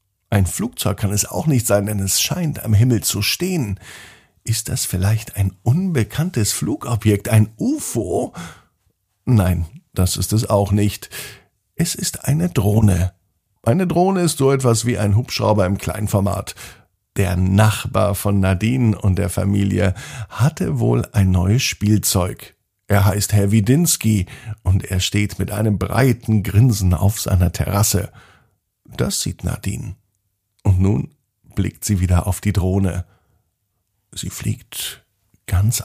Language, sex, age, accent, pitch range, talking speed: German, male, 50-69, German, 95-115 Hz, 135 wpm